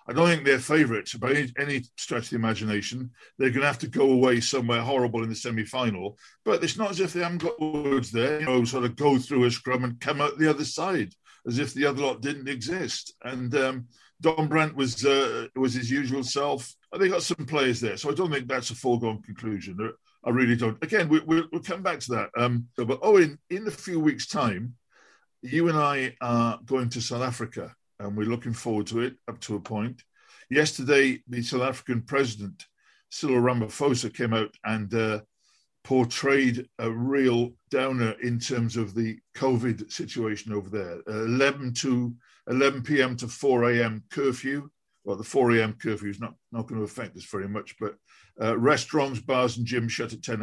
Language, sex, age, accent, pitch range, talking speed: English, male, 50-69, British, 115-140 Hz, 205 wpm